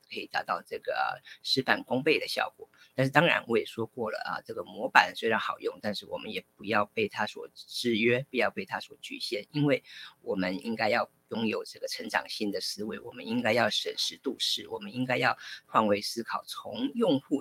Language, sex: Chinese, female